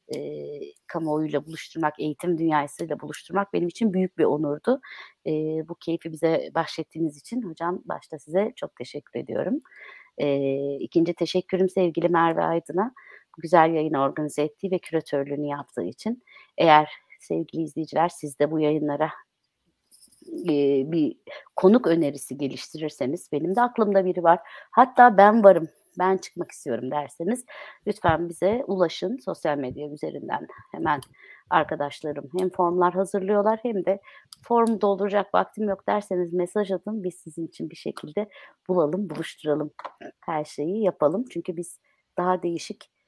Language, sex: Turkish, female